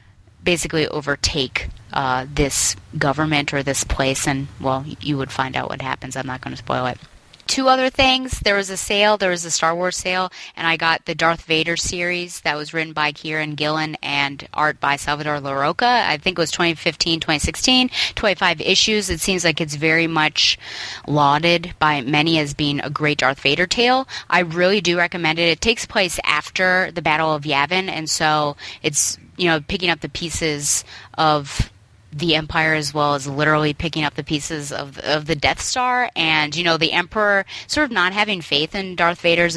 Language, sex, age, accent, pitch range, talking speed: English, female, 20-39, American, 150-185 Hz, 195 wpm